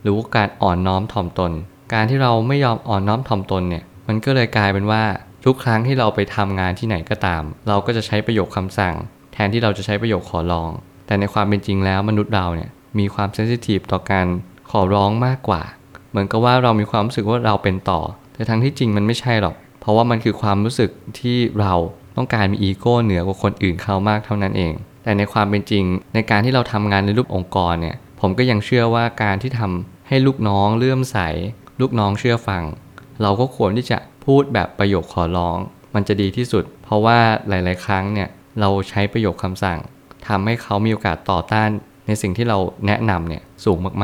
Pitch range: 95-115 Hz